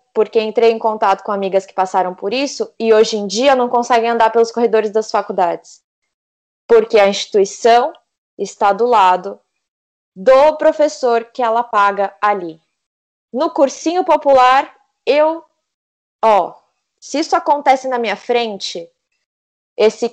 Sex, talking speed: female, 135 wpm